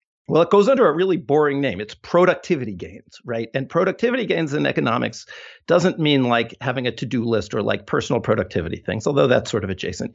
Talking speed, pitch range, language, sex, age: 200 wpm, 130-195 Hz, English, male, 50-69